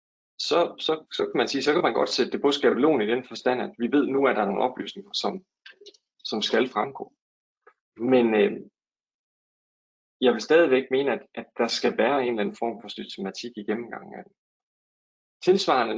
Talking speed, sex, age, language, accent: 190 wpm, male, 20-39, Danish, native